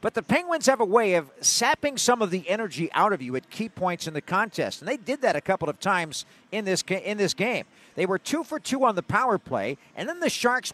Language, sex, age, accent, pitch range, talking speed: English, male, 50-69, American, 195-310 Hz, 270 wpm